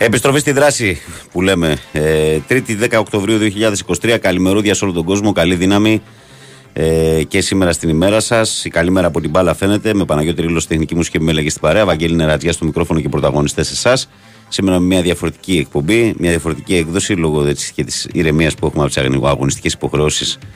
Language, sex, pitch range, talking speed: Greek, male, 80-105 Hz, 185 wpm